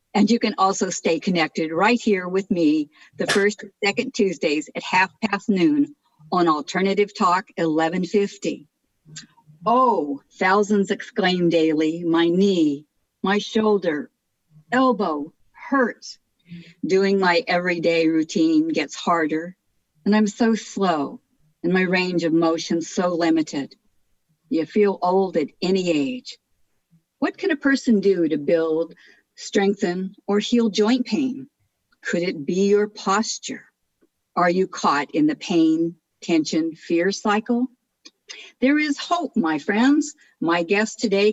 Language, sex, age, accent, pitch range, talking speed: English, female, 50-69, American, 170-225 Hz, 130 wpm